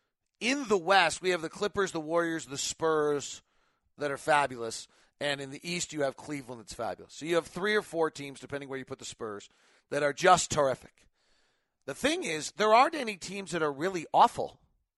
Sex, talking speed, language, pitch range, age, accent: male, 205 wpm, English, 145-195 Hz, 40-59, American